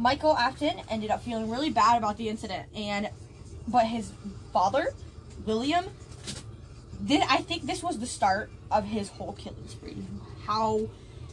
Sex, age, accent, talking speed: female, 10-29, American, 150 wpm